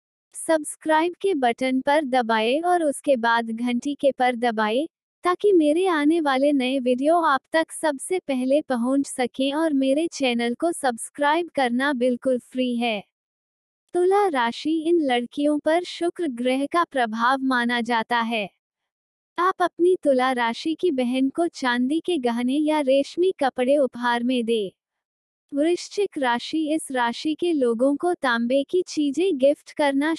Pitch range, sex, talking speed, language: 245-320 Hz, female, 145 wpm, Hindi